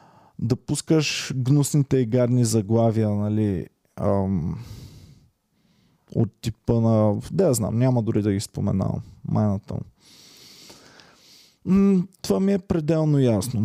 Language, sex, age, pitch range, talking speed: Bulgarian, male, 20-39, 120-150 Hz, 100 wpm